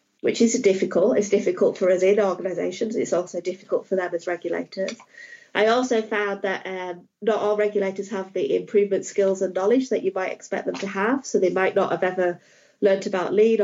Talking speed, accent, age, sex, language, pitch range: 200 wpm, British, 30-49, female, English, 185-220 Hz